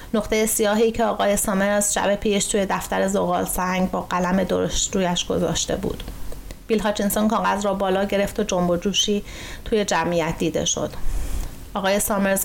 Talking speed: 155 wpm